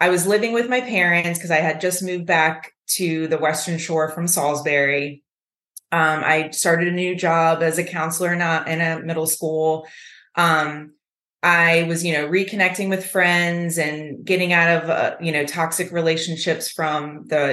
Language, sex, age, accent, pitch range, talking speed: English, female, 20-39, American, 155-185 Hz, 180 wpm